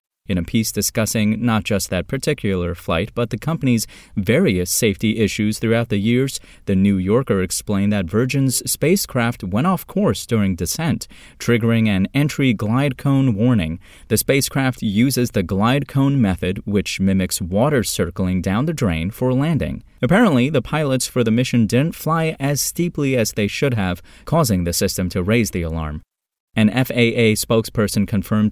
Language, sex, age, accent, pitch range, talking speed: English, male, 30-49, American, 95-125 Hz, 160 wpm